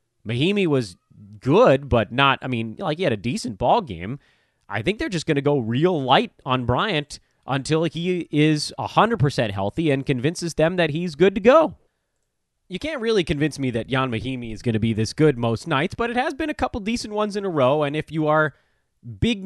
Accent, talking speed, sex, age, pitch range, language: American, 215 wpm, male, 30-49, 110-165 Hz, English